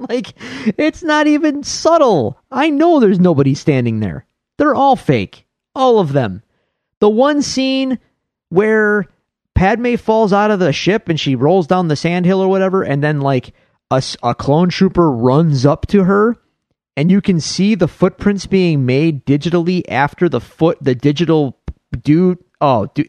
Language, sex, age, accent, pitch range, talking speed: English, male, 30-49, American, 125-190 Hz, 165 wpm